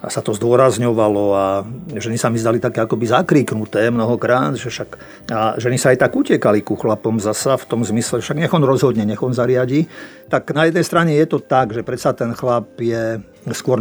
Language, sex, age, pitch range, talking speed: Slovak, male, 50-69, 115-135 Hz, 200 wpm